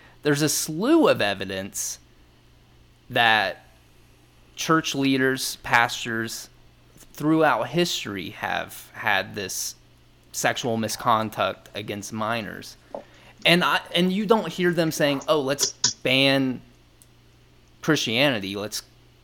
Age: 20-39